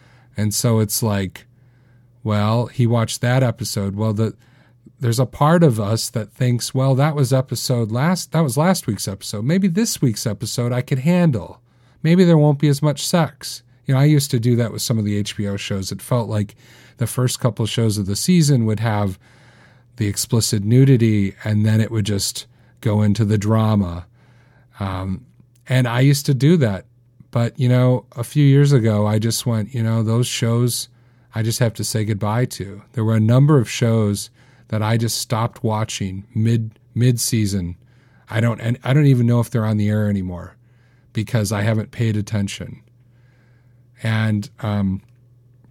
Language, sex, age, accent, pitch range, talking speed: English, male, 40-59, American, 110-130 Hz, 185 wpm